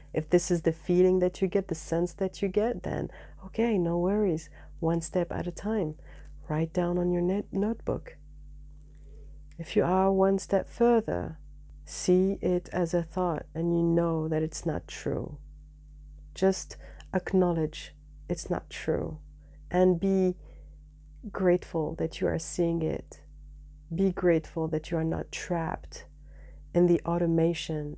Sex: female